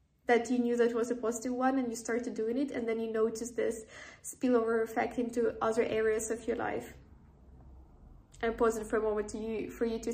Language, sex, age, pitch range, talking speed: English, female, 10-29, 225-245 Hz, 200 wpm